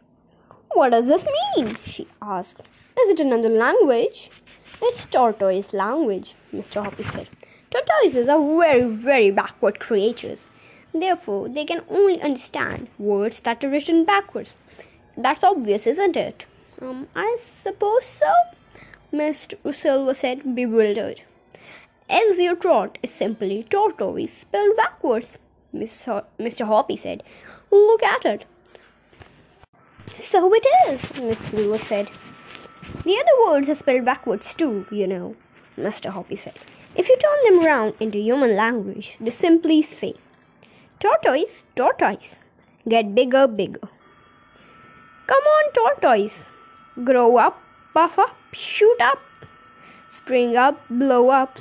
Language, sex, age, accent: Hindi, female, 20-39, native